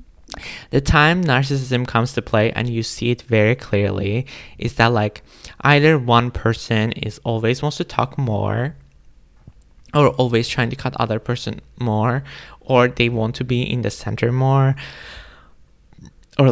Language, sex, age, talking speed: English, male, 20-39, 155 wpm